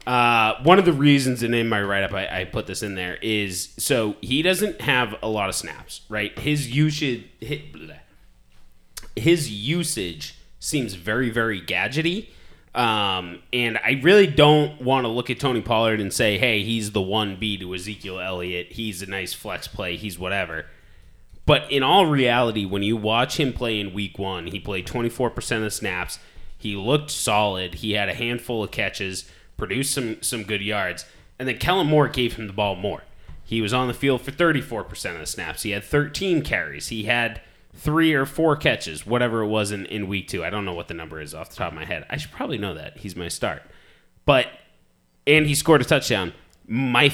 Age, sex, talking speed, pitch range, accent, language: 20-39, male, 200 wpm, 95-135 Hz, American, English